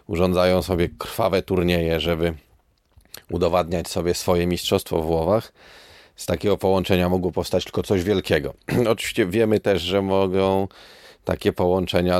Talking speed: 135 wpm